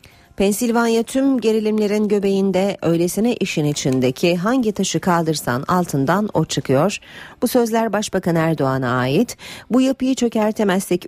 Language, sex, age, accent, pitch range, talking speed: Turkish, female, 40-59, native, 155-210 Hz, 115 wpm